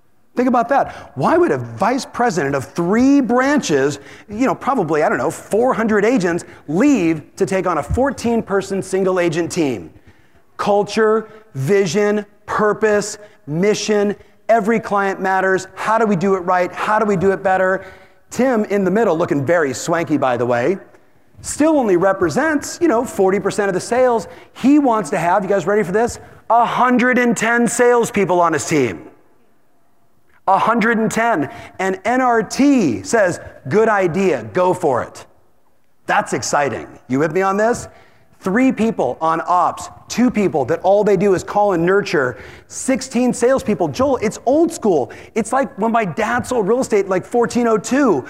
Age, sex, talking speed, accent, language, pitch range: 40-59, male, 160 wpm, American, English, 185-240 Hz